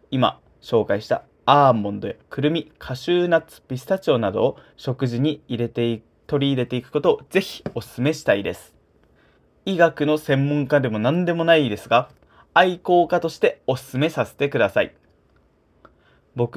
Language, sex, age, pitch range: Japanese, male, 20-39, 120-155 Hz